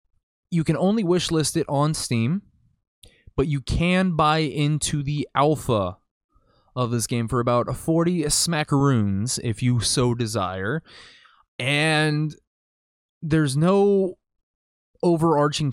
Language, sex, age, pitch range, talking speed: English, male, 20-39, 115-150 Hz, 115 wpm